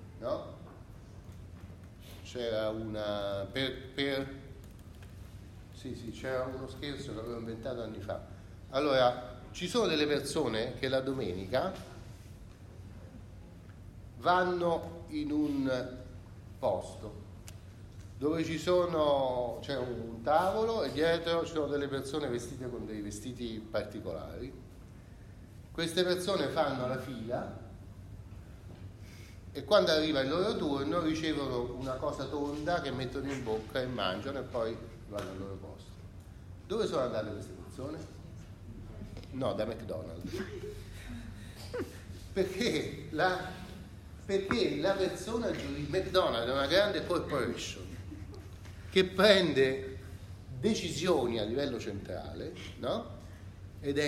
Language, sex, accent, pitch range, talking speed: Italian, male, native, 95-135 Hz, 110 wpm